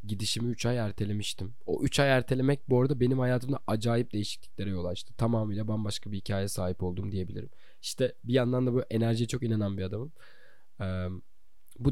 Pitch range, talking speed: 100-125 Hz, 175 wpm